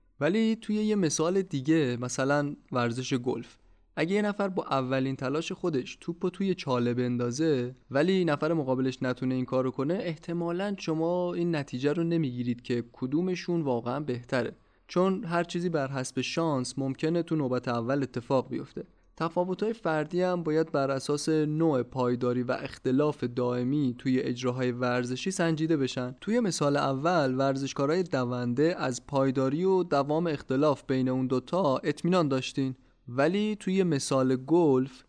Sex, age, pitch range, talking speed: male, 20-39, 125-165 Hz, 145 wpm